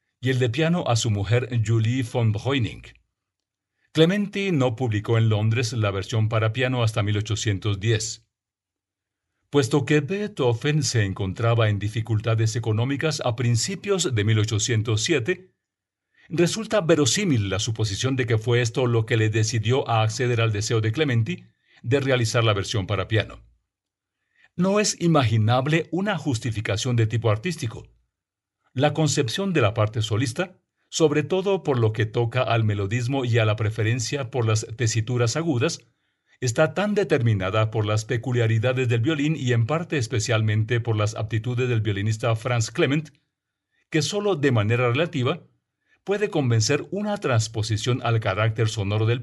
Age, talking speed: 50-69, 145 wpm